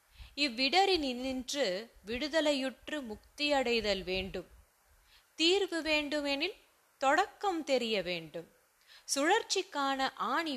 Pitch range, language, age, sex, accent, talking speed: 225-310 Hz, Tamil, 20-39, female, native, 75 wpm